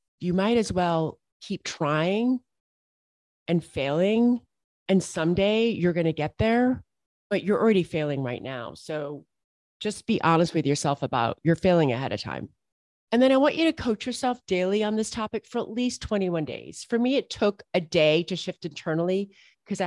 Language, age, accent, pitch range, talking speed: English, 30-49, American, 165-210 Hz, 180 wpm